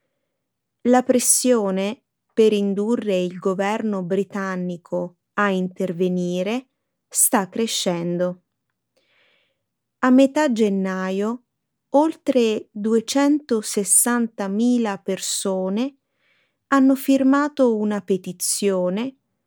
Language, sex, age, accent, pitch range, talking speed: Italian, female, 20-39, native, 185-255 Hz, 65 wpm